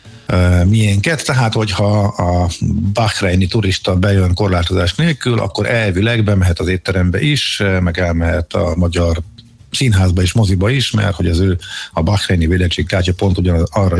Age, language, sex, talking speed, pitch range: 50-69, Hungarian, male, 145 wpm, 90-115 Hz